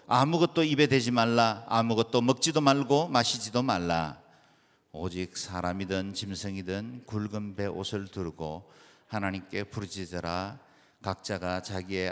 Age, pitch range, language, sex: 50-69, 100-130 Hz, Korean, male